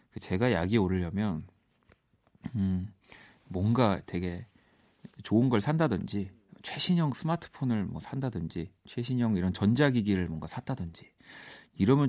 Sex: male